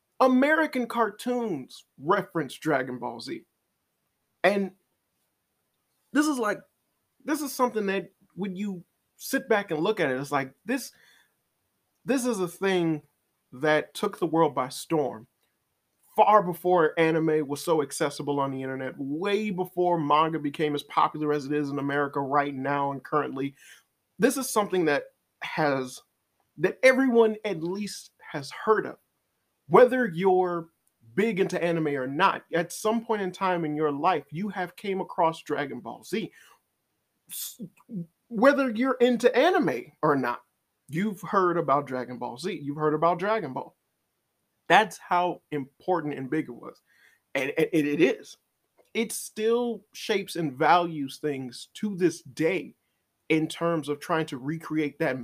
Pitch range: 145-210 Hz